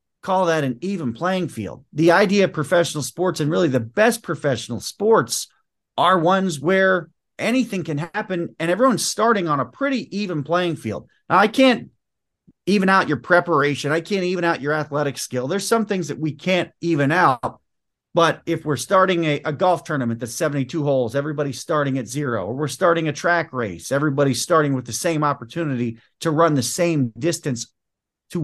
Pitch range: 130-180 Hz